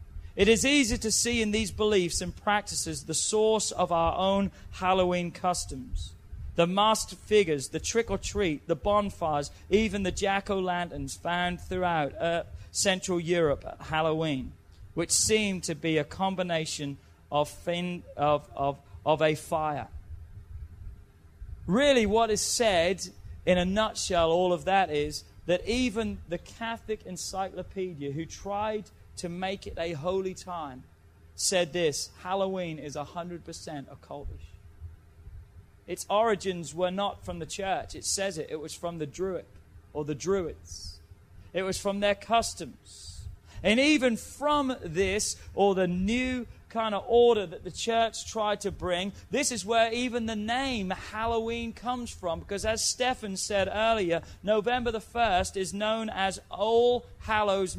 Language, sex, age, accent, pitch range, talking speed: English, male, 40-59, British, 145-210 Hz, 140 wpm